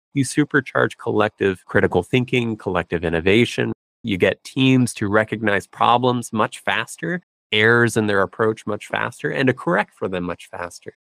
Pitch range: 90-115 Hz